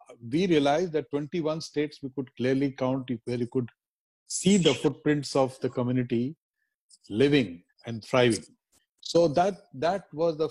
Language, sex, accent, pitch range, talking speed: English, male, Indian, 130-170 Hz, 150 wpm